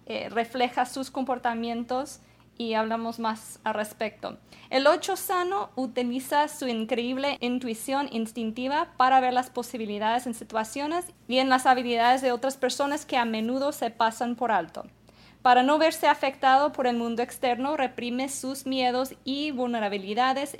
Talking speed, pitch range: 145 wpm, 230-270 Hz